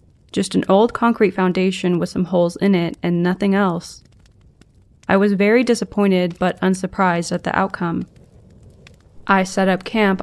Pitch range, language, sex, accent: 180-210 Hz, English, female, American